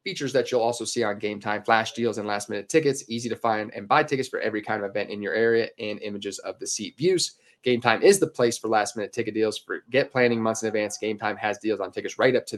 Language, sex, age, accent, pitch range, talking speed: English, male, 20-39, American, 105-135 Hz, 255 wpm